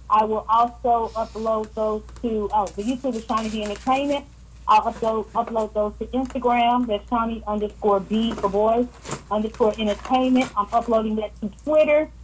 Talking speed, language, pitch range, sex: 155 wpm, English, 210-245 Hz, female